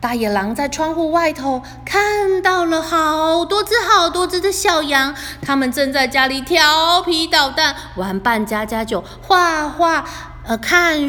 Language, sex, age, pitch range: Chinese, female, 20-39, 265-375 Hz